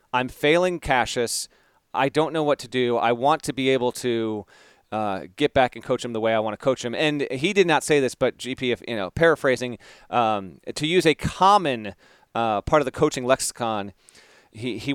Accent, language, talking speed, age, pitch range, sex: American, English, 210 wpm, 30-49, 115-150 Hz, male